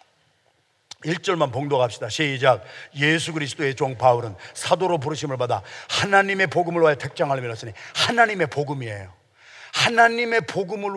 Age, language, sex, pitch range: 50-69, Korean, male, 135-225 Hz